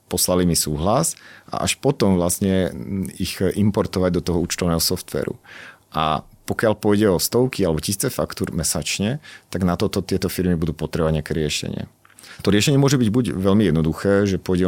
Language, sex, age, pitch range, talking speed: Slovak, male, 40-59, 85-95 Hz, 165 wpm